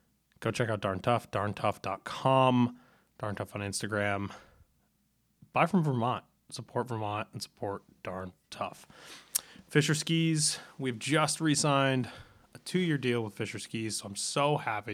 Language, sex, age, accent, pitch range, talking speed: English, male, 20-39, American, 105-130 Hz, 135 wpm